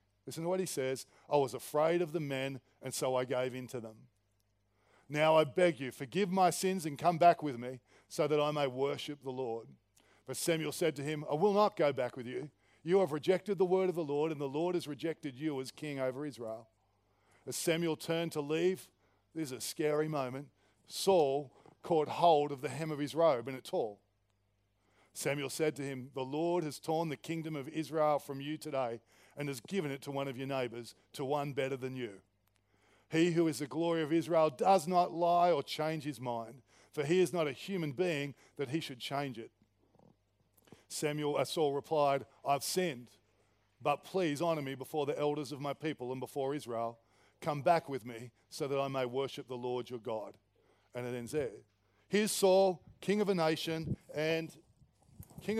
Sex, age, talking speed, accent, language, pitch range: male, 40-59, 205 wpm, Australian, English, 125-160 Hz